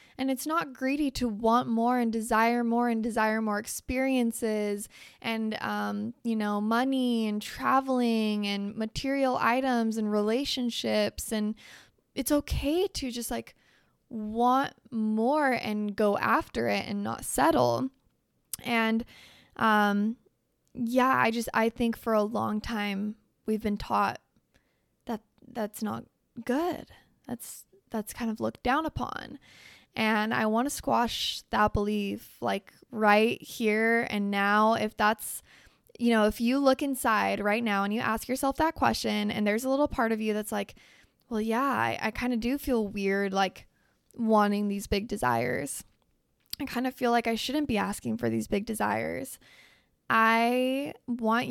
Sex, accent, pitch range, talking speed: female, American, 215-255 Hz, 155 wpm